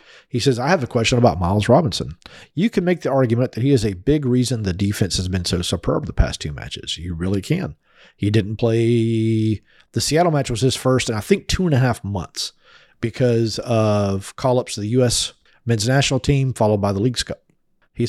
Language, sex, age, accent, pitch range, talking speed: English, male, 40-59, American, 95-125 Hz, 220 wpm